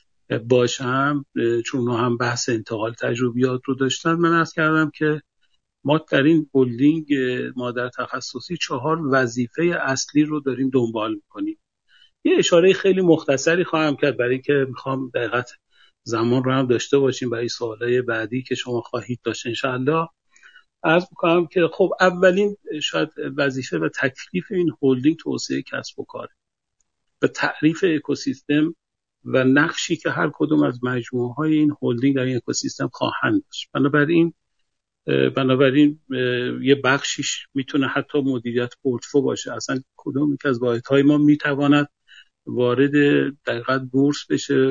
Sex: male